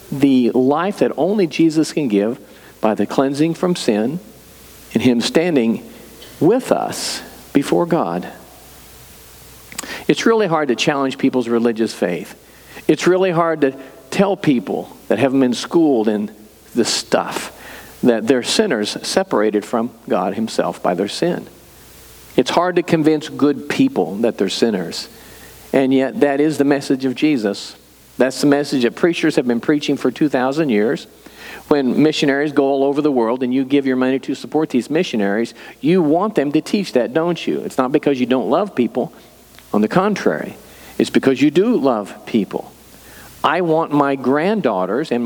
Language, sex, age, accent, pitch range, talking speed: English, male, 50-69, American, 125-160 Hz, 165 wpm